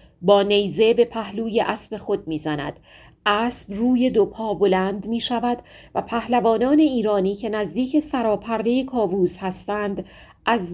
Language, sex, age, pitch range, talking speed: Persian, female, 40-59, 180-245 Hz, 125 wpm